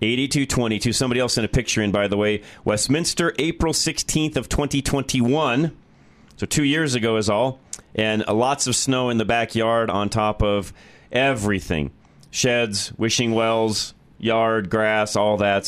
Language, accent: English, American